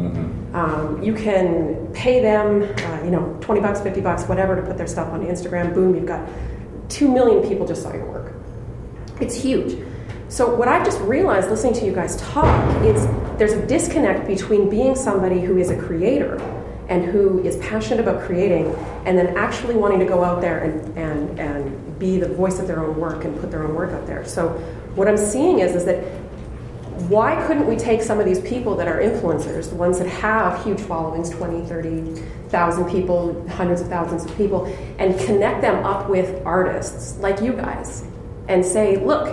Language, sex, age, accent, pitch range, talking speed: English, female, 30-49, American, 165-205 Hz, 190 wpm